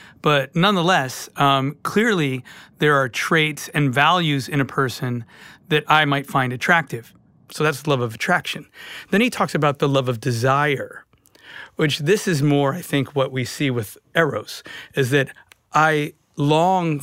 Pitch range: 135-160 Hz